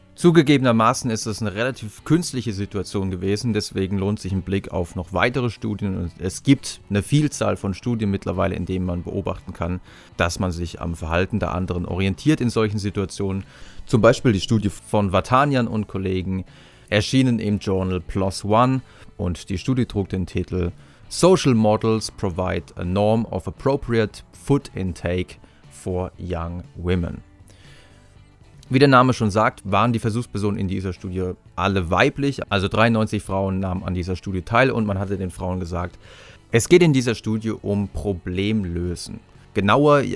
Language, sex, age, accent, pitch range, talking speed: German, male, 30-49, German, 95-115 Hz, 160 wpm